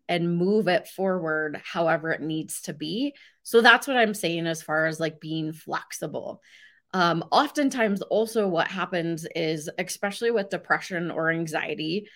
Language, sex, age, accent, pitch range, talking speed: English, female, 20-39, American, 170-220 Hz, 155 wpm